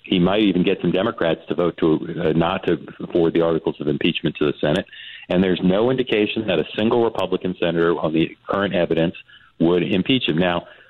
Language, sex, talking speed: English, male, 205 wpm